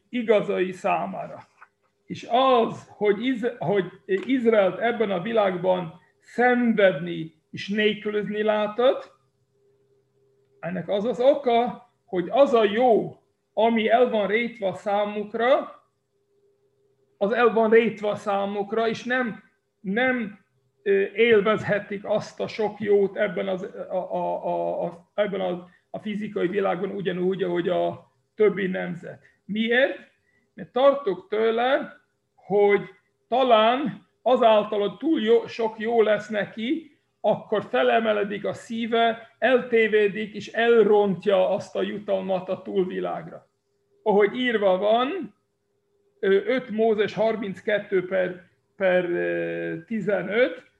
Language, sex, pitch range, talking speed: Hungarian, male, 190-230 Hz, 105 wpm